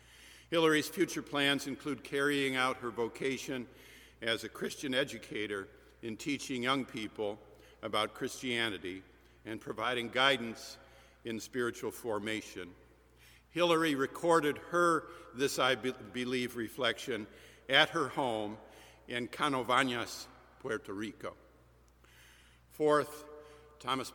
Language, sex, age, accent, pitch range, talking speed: English, male, 60-79, American, 115-140 Hz, 100 wpm